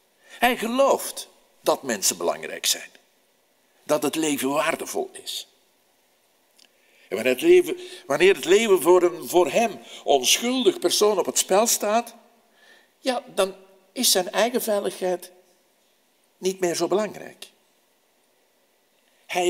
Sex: male